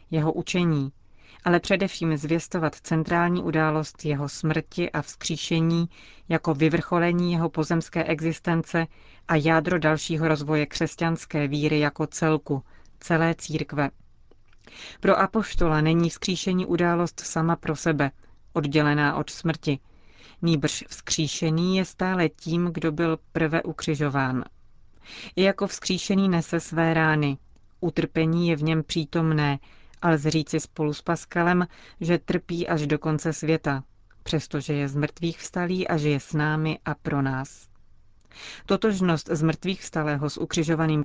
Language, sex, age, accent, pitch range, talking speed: Czech, female, 30-49, native, 150-170 Hz, 125 wpm